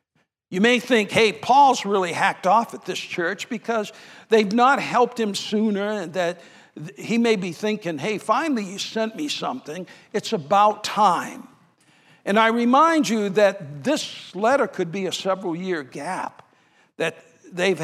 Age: 60-79